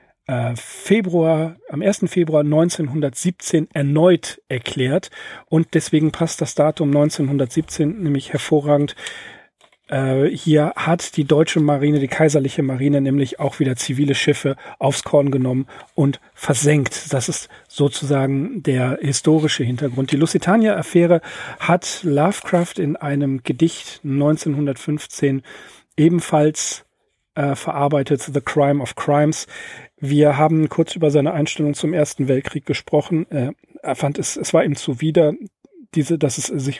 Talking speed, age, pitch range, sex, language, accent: 120 wpm, 40-59, 140-160 Hz, male, German, German